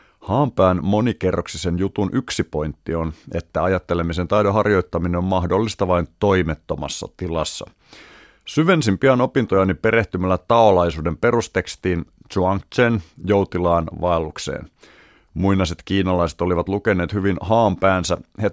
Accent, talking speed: native, 100 wpm